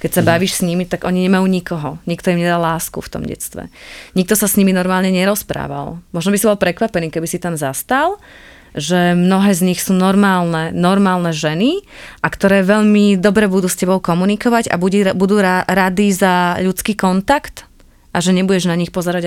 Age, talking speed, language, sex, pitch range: 20-39, 185 wpm, Slovak, female, 170-205 Hz